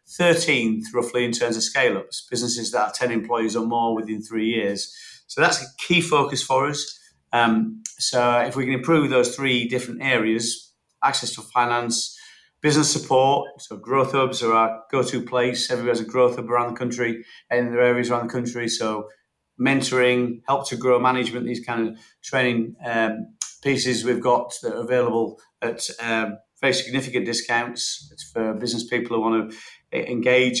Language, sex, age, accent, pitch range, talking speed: English, male, 40-59, British, 115-130 Hz, 175 wpm